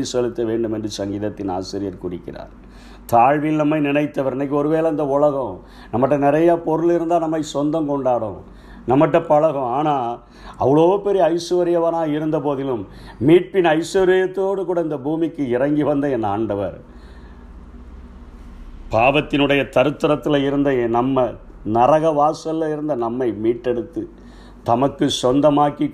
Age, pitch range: 50-69, 120-165 Hz